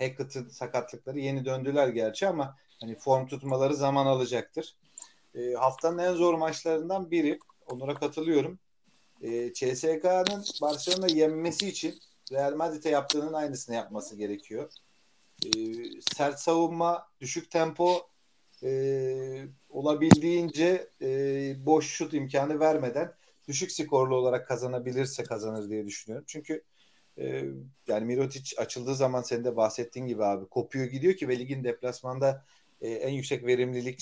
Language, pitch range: Turkish, 125-155 Hz